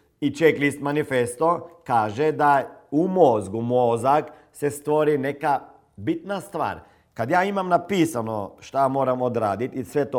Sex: male